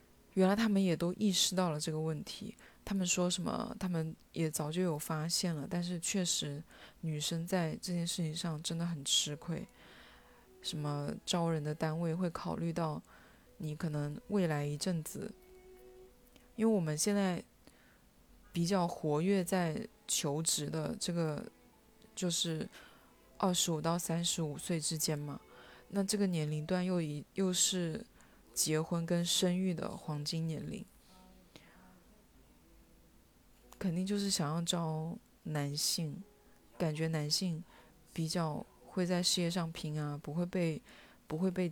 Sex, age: female, 20-39